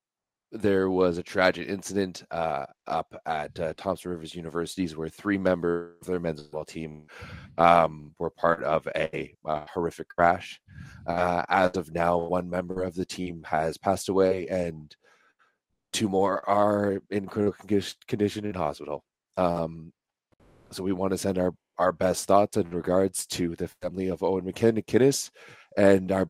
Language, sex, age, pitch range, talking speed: English, male, 30-49, 85-100 Hz, 160 wpm